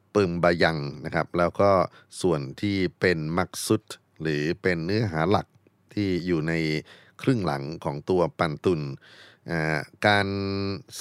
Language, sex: Thai, male